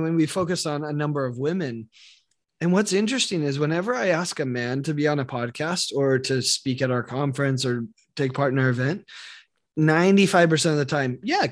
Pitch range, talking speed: 140-185 Hz, 205 wpm